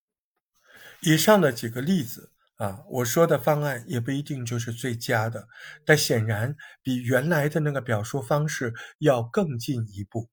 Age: 50-69